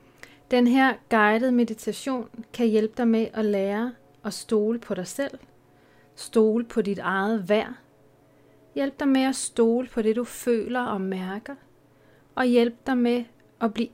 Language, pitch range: Danish, 145-230 Hz